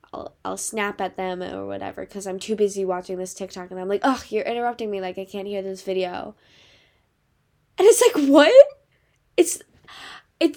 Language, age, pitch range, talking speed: English, 10-29, 205-320 Hz, 180 wpm